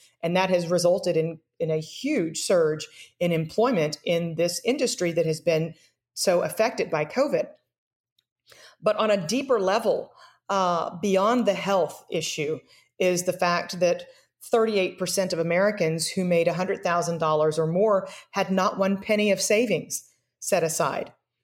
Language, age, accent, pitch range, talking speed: English, 40-59, American, 170-210 Hz, 145 wpm